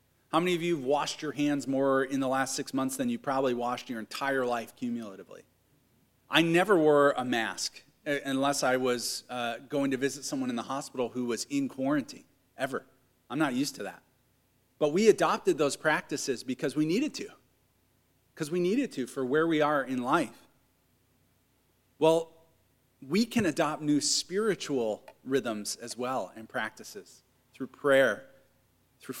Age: 40-59